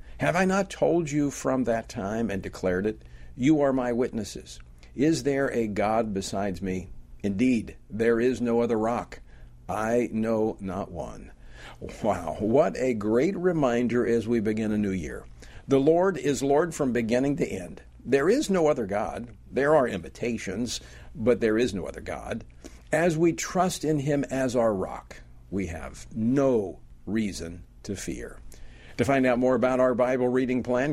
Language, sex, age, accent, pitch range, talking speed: English, male, 50-69, American, 95-140 Hz, 170 wpm